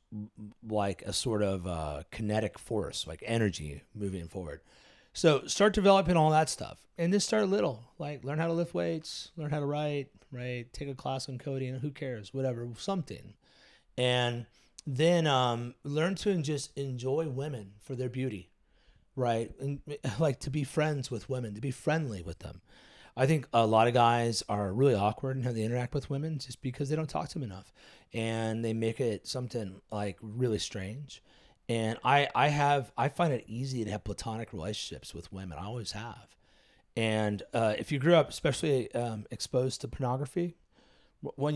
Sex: male